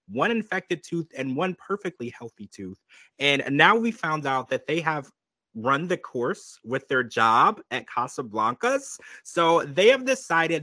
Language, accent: English, American